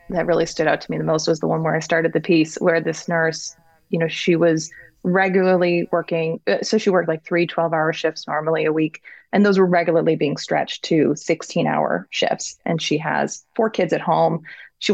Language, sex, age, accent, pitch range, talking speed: English, female, 30-49, American, 165-195 Hz, 210 wpm